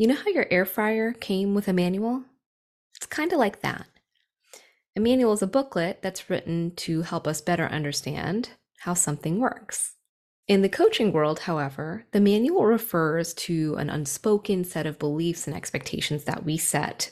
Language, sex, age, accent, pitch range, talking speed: English, female, 20-39, American, 155-230 Hz, 170 wpm